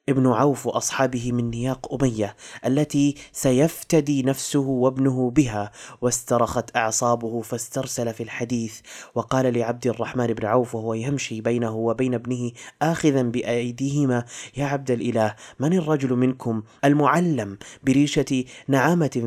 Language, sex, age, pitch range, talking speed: Arabic, male, 20-39, 115-140 Hz, 115 wpm